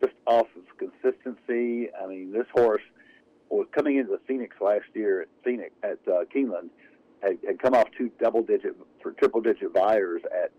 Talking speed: 175 wpm